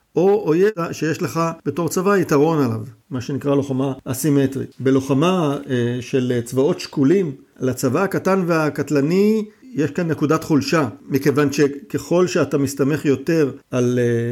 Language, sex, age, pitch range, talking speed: Hebrew, male, 50-69, 130-160 Hz, 120 wpm